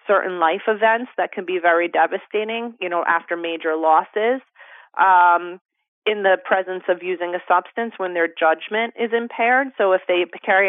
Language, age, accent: English, 30-49, American